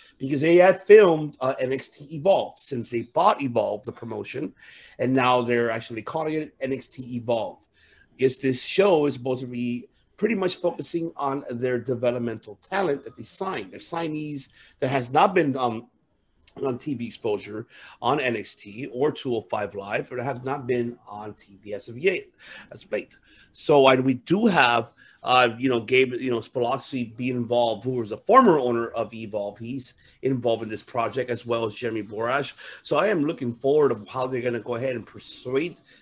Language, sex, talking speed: English, male, 185 wpm